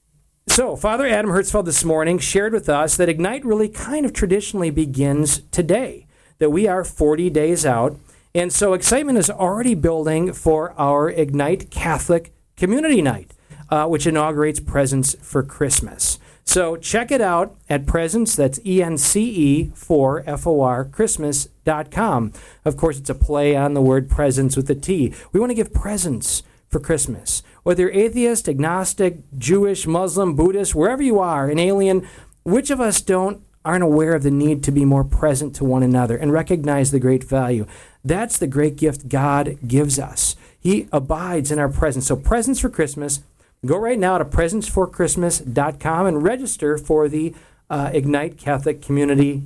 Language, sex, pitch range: English, male, 145-185 Hz